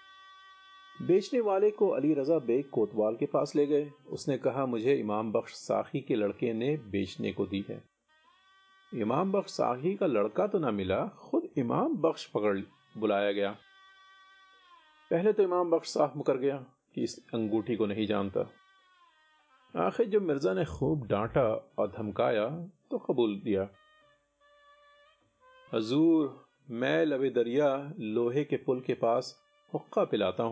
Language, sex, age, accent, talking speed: Hindi, male, 40-59, native, 145 wpm